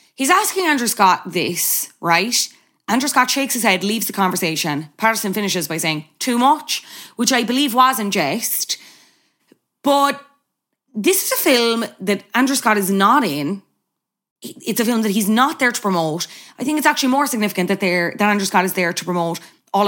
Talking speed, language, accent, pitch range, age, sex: 185 wpm, English, Irish, 180-235 Hz, 20-39, female